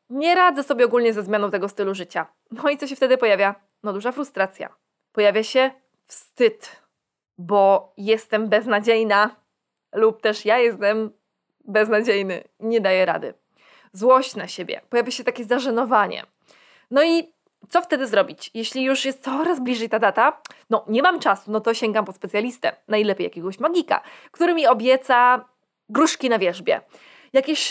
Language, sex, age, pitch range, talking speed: Polish, female, 20-39, 205-275 Hz, 150 wpm